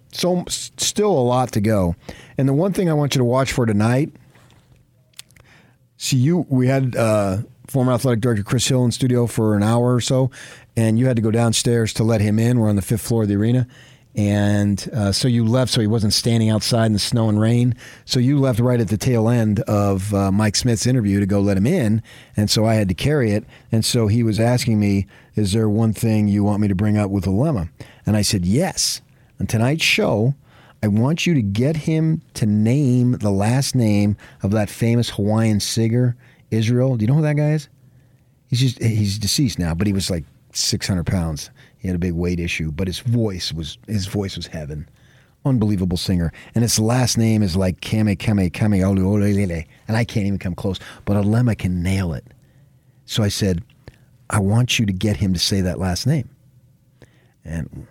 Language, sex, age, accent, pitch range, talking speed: English, male, 40-59, American, 100-125 Hz, 210 wpm